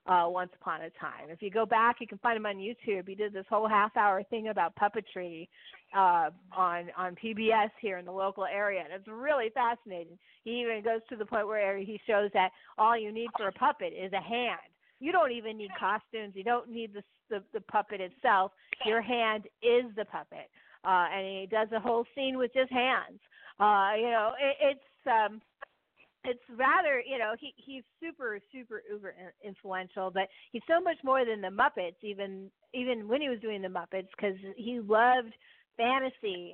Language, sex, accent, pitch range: English, female, American, 195-250 Hz